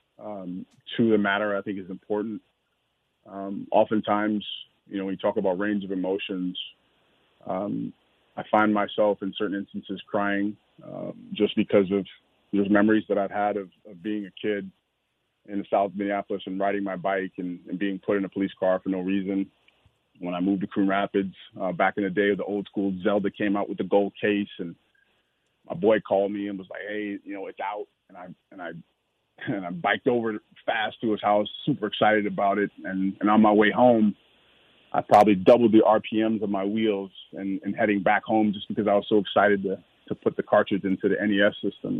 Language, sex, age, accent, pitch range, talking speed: English, male, 30-49, American, 95-105 Hz, 205 wpm